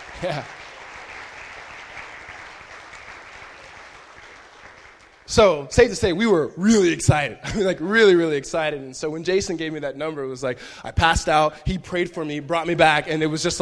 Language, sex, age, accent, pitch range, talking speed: English, male, 20-39, American, 130-165 Hz, 175 wpm